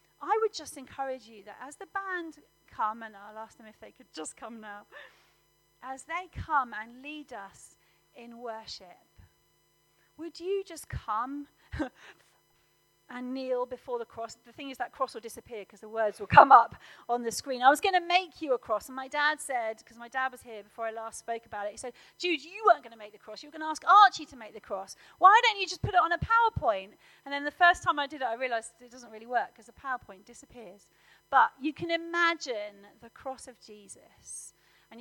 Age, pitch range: 40-59, 215-275 Hz